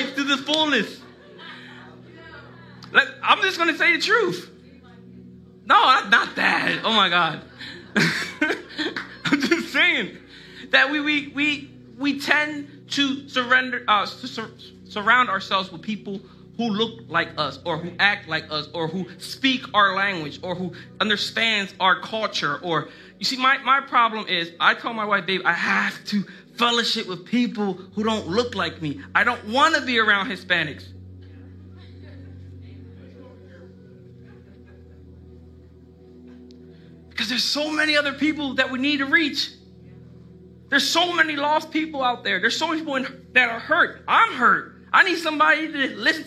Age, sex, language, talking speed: 20-39, male, English, 145 wpm